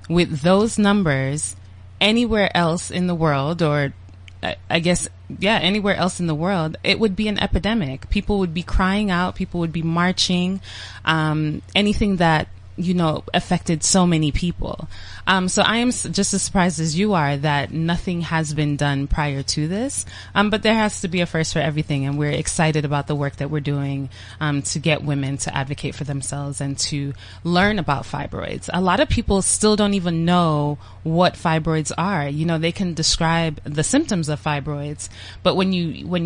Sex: female